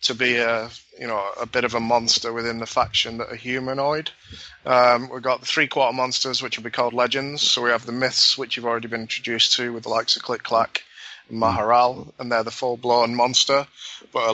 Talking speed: 230 wpm